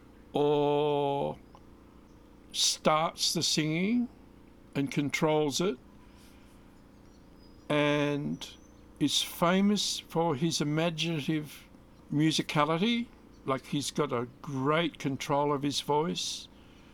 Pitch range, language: 130-165 Hz, English